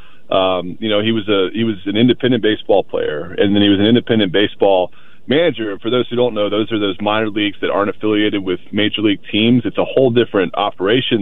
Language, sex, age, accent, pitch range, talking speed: English, male, 30-49, American, 100-120 Hz, 225 wpm